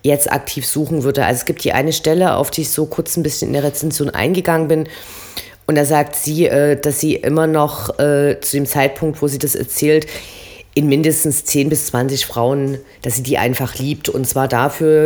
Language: German